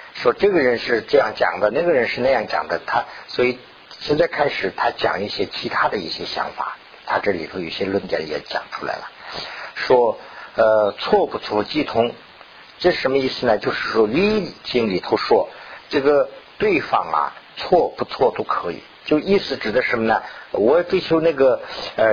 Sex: male